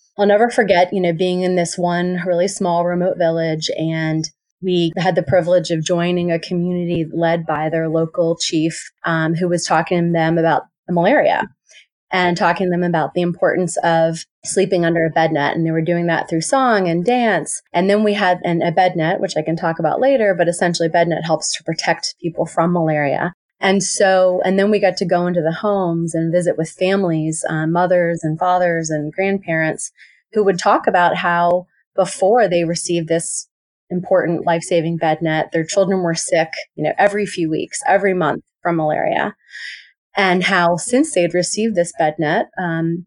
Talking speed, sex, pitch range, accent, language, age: 190 wpm, female, 165-185 Hz, American, English, 30-49